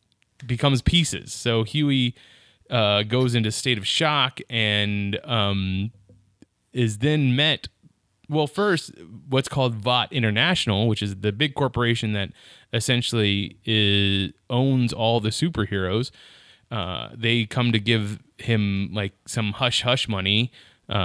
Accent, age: American, 20-39